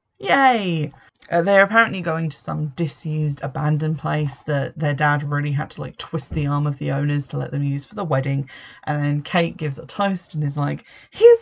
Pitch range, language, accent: 145-170 Hz, English, British